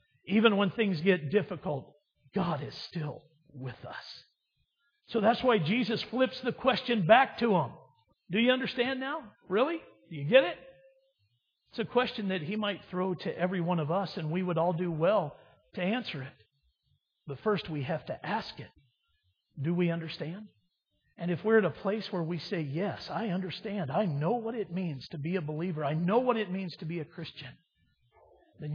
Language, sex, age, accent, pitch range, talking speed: English, male, 50-69, American, 160-225 Hz, 190 wpm